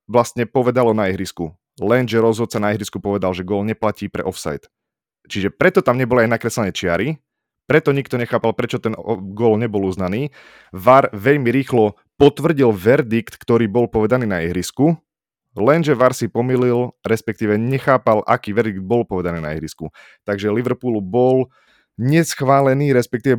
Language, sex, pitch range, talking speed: Slovak, male, 105-125 Hz, 145 wpm